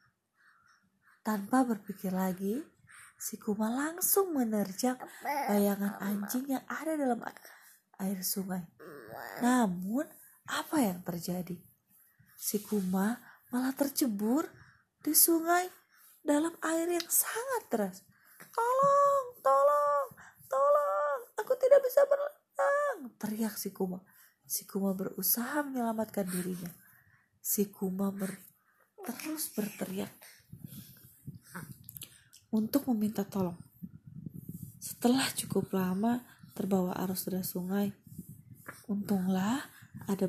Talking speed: 90 wpm